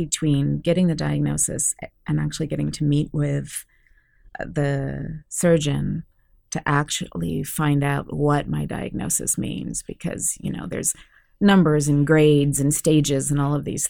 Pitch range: 140-165 Hz